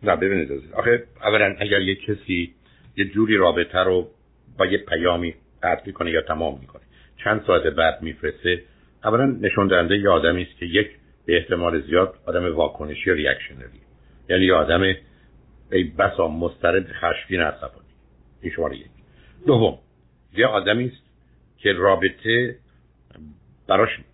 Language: Persian